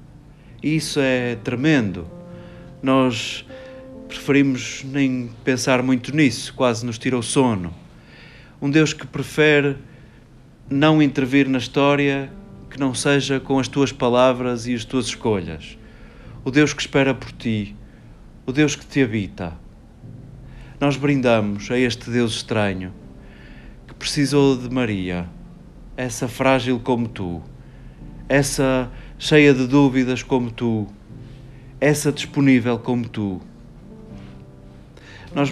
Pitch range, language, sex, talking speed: 120-135 Hz, Portuguese, male, 115 wpm